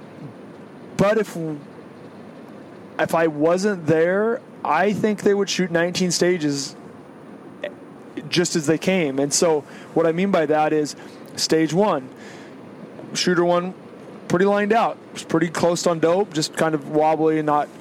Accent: American